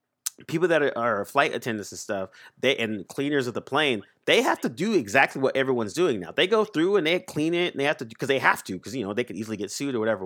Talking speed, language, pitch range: 280 wpm, English, 110-145 Hz